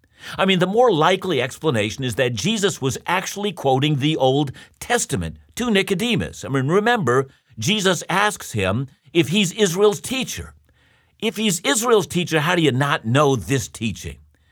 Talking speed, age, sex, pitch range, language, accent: 155 wpm, 60-79, male, 110-180 Hz, English, American